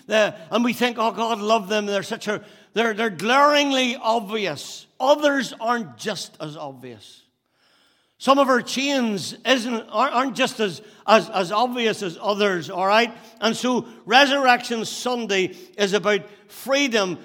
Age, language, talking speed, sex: 60-79, English, 150 wpm, male